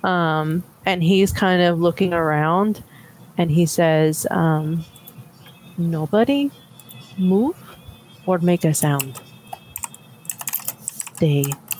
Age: 30-49